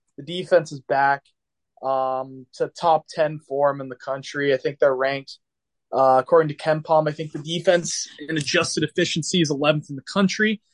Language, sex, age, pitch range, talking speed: English, male, 20-39, 135-170 Hz, 185 wpm